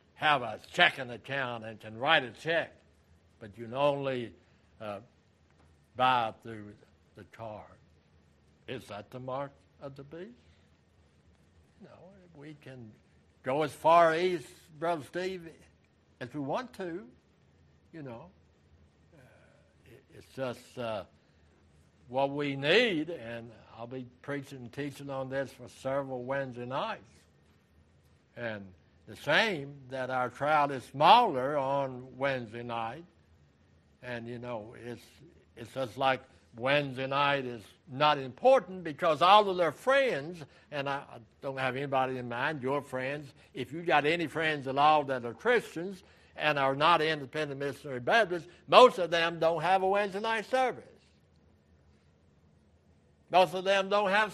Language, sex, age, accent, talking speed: English, male, 60-79, American, 140 wpm